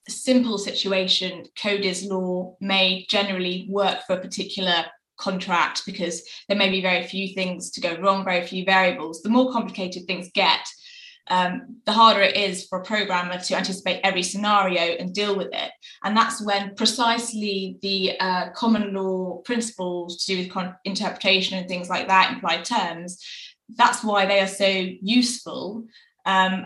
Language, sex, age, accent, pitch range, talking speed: English, female, 20-39, British, 180-205 Hz, 165 wpm